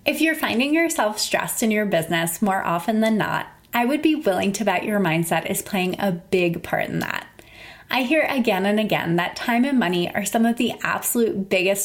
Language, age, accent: English, 20-39, American